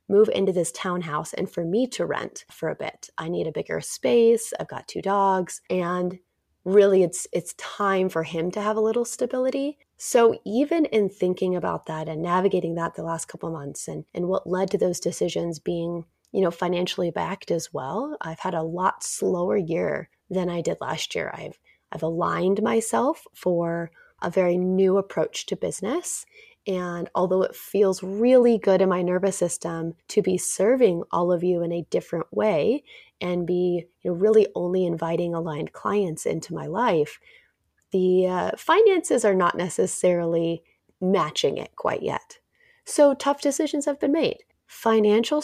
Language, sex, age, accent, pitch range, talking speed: English, female, 30-49, American, 175-220 Hz, 170 wpm